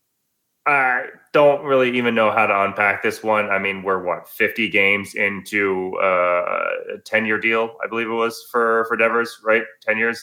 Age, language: 20-39, English